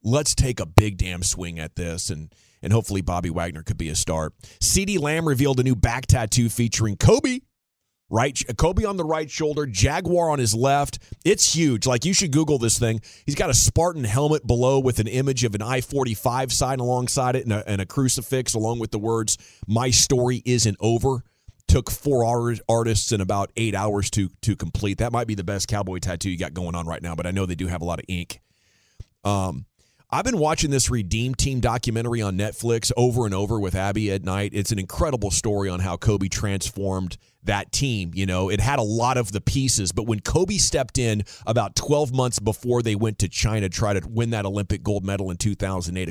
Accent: American